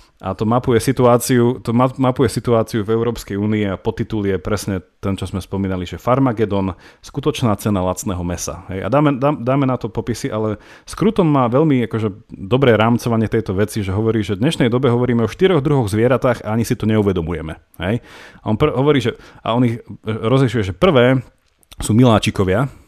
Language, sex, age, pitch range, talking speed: Slovak, male, 30-49, 105-130 Hz, 175 wpm